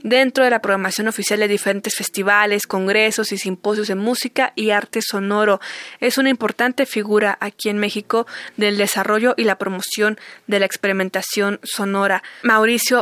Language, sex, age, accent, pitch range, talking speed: Spanish, female, 20-39, Mexican, 210-250 Hz, 150 wpm